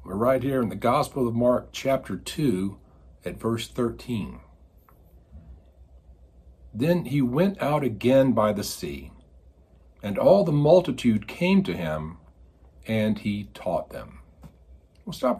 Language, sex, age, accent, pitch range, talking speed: English, male, 50-69, American, 75-120 Hz, 135 wpm